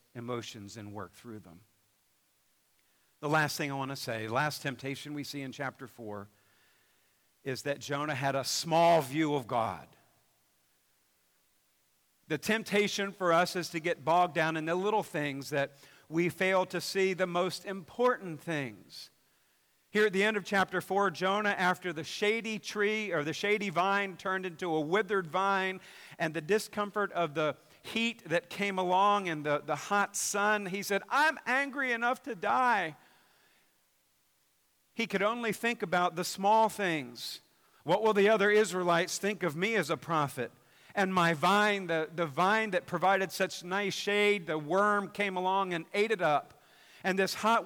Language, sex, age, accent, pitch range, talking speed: English, male, 50-69, American, 155-205 Hz, 170 wpm